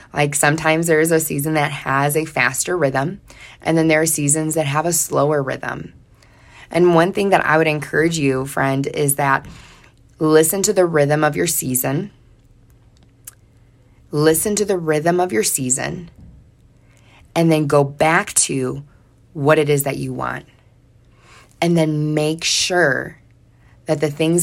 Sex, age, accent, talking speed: female, 20-39, American, 155 wpm